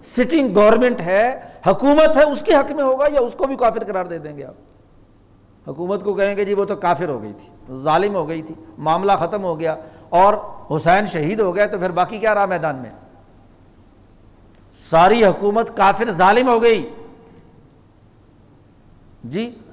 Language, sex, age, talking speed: Urdu, male, 60-79, 180 wpm